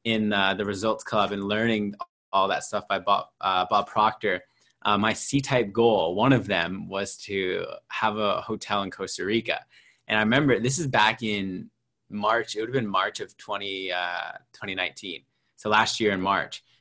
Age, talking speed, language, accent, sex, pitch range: 20-39, 185 wpm, English, American, male, 100-120 Hz